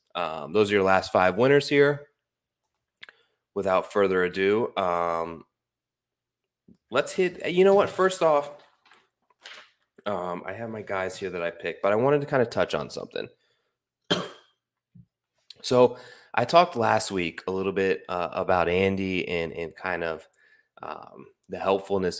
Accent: American